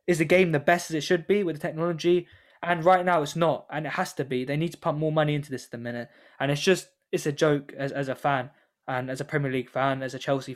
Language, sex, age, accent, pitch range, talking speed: English, male, 10-29, British, 135-165 Hz, 295 wpm